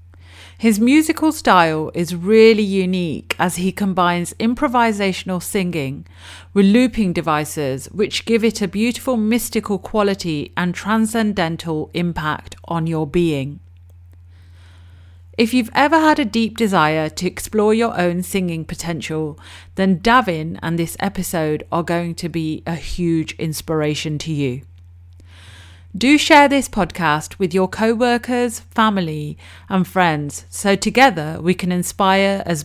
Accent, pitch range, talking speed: British, 135-200 Hz, 130 wpm